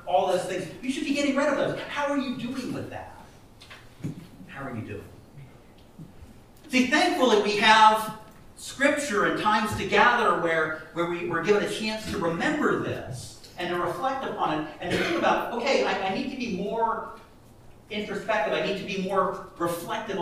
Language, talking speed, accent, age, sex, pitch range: English, 180 wpm, American, 50-69, male, 165-225 Hz